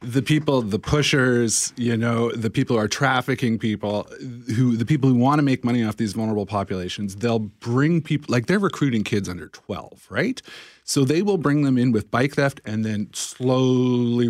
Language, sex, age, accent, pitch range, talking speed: English, male, 30-49, American, 105-140 Hz, 195 wpm